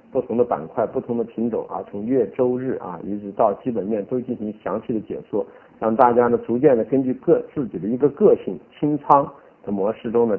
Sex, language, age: male, Chinese, 50-69